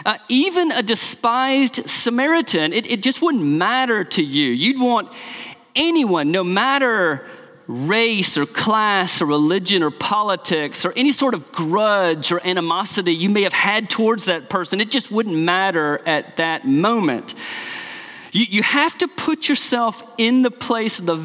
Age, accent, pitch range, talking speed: 30-49, American, 185-265 Hz, 160 wpm